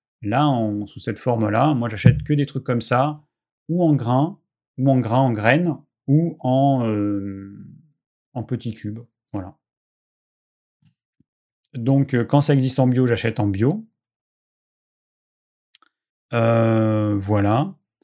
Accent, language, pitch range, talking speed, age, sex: French, French, 105-130 Hz, 120 wpm, 30-49, male